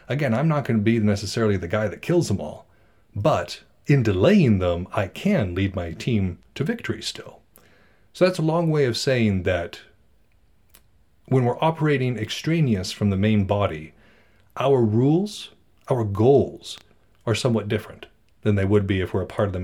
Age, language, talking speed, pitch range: 30-49, English, 175 wpm, 95-115 Hz